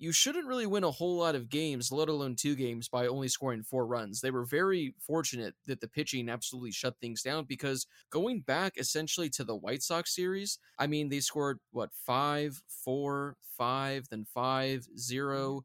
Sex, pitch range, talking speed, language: male, 130-170 Hz, 190 wpm, English